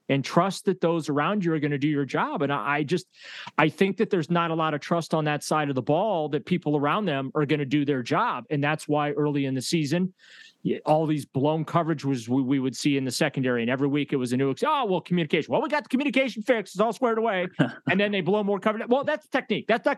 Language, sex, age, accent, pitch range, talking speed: English, male, 30-49, American, 130-175 Hz, 275 wpm